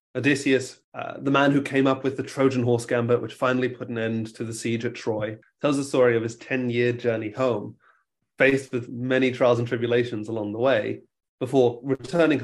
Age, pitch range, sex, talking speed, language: 30-49, 115-135 Hz, male, 200 wpm, English